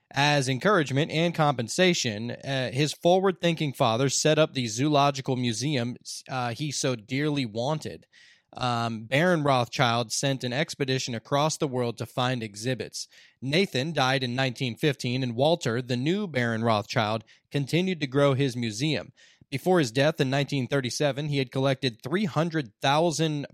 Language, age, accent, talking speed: English, 20-39, American, 140 wpm